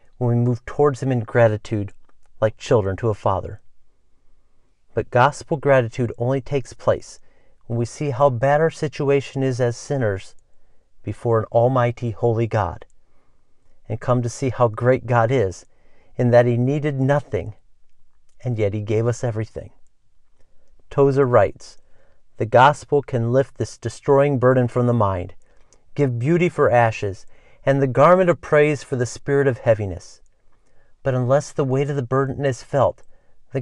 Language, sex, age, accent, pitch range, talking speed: English, male, 50-69, American, 105-135 Hz, 155 wpm